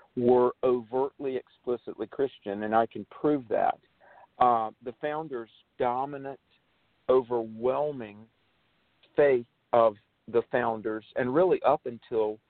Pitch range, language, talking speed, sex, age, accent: 115-140 Hz, English, 105 wpm, male, 50-69, American